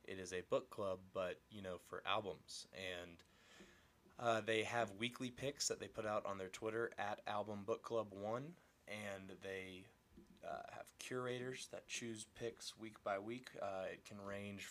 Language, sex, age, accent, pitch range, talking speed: English, male, 20-39, American, 95-115 Hz, 165 wpm